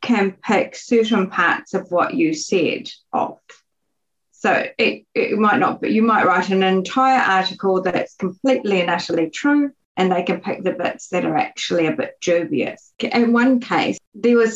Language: English